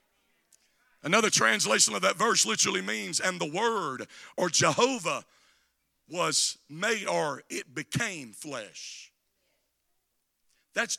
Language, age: English, 50-69